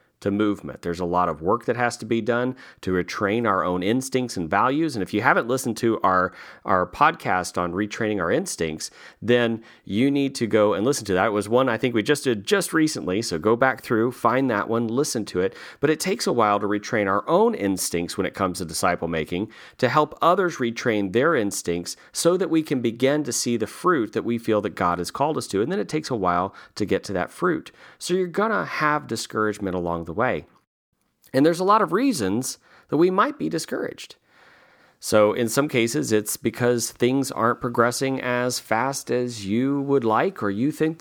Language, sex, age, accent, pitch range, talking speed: English, male, 40-59, American, 105-145 Hz, 215 wpm